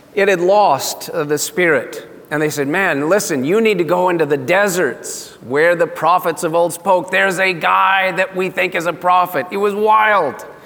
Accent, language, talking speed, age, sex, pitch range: American, English, 195 wpm, 40-59, male, 155-205 Hz